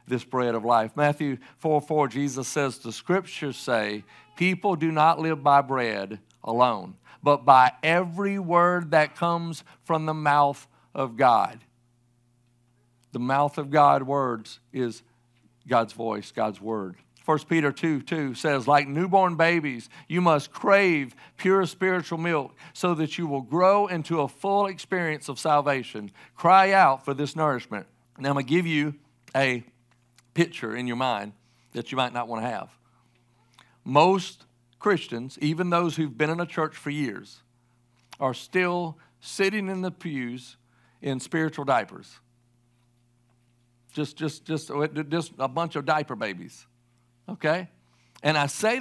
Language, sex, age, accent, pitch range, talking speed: English, male, 50-69, American, 120-165 Hz, 150 wpm